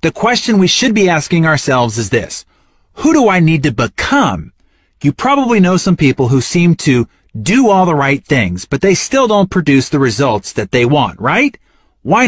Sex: male